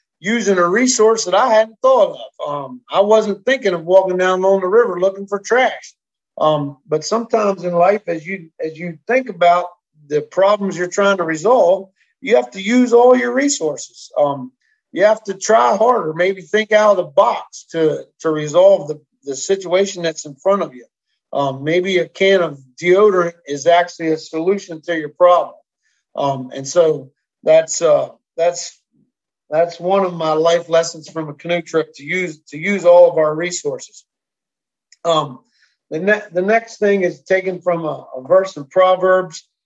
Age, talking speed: 50-69, 180 wpm